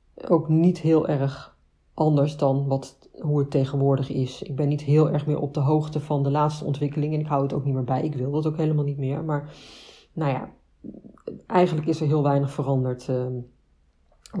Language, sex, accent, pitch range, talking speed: Dutch, female, Dutch, 140-190 Hz, 200 wpm